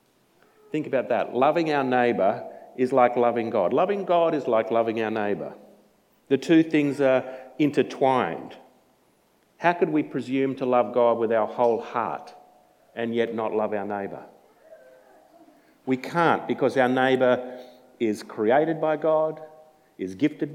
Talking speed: 145 wpm